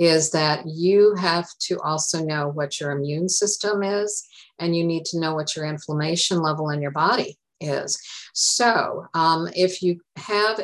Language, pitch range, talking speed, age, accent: English, 150-180 Hz, 170 wpm, 50-69, American